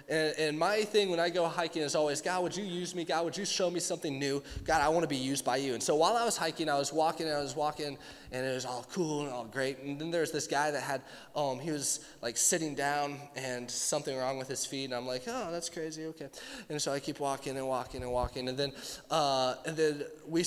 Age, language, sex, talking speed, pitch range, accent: 20-39, English, male, 275 wpm, 140-180 Hz, American